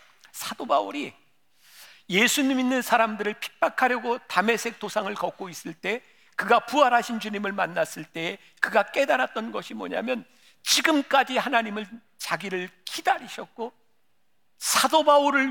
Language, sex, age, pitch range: Korean, male, 50-69, 200-275 Hz